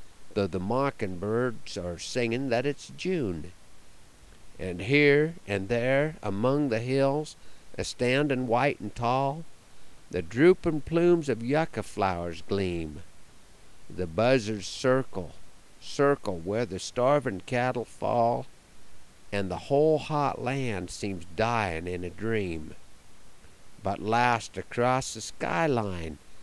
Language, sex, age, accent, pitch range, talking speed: English, male, 50-69, American, 95-135 Hz, 115 wpm